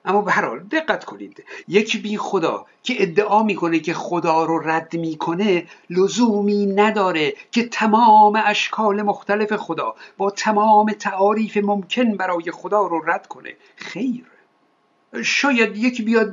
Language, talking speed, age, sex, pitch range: Persian, 130 wpm, 60-79, male, 185-235 Hz